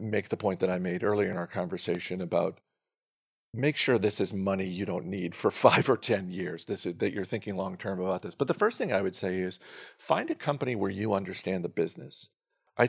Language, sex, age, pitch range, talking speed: English, male, 50-69, 95-105 Hz, 235 wpm